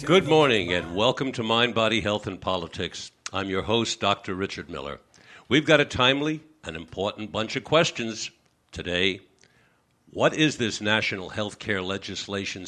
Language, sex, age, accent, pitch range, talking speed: English, male, 60-79, American, 95-130 Hz, 155 wpm